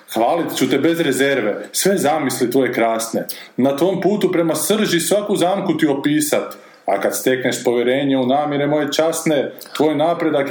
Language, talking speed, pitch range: Croatian, 160 wpm, 135-195 Hz